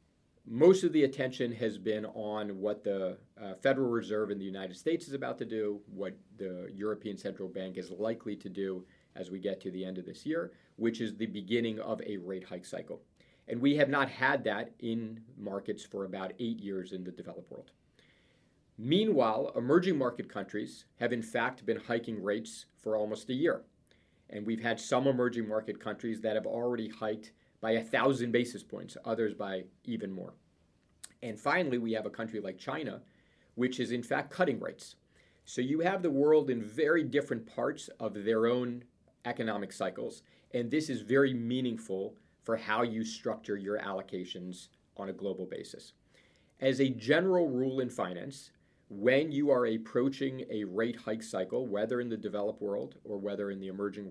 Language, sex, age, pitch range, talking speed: English, male, 40-59, 105-125 Hz, 180 wpm